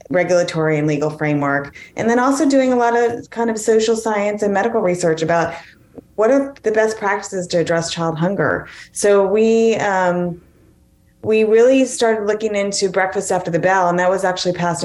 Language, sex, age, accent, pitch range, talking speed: English, female, 30-49, American, 160-200 Hz, 180 wpm